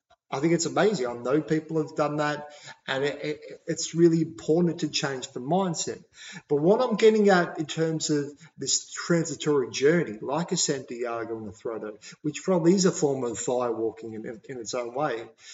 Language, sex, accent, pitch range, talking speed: English, male, Australian, 145-180 Hz, 195 wpm